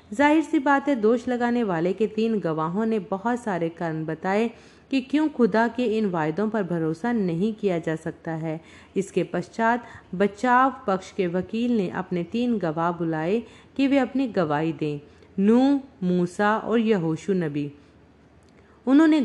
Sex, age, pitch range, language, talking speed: female, 50-69, 180-240 Hz, Hindi, 150 wpm